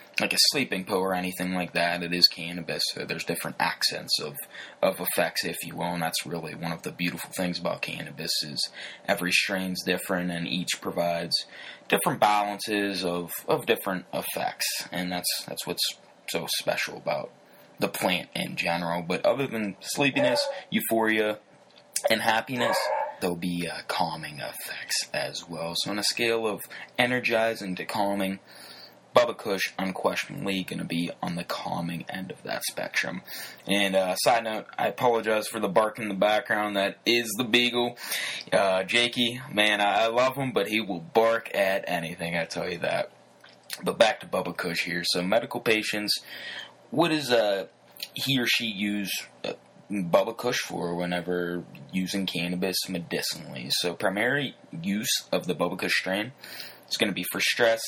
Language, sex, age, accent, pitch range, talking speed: English, male, 20-39, American, 90-115 Hz, 165 wpm